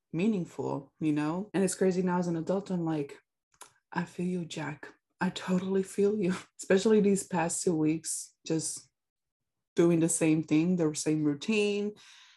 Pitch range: 155-210 Hz